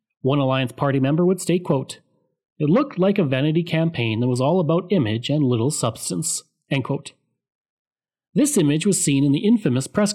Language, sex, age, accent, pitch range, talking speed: English, male, 30-49, Canadian, 130-180 Hz, 185 wpm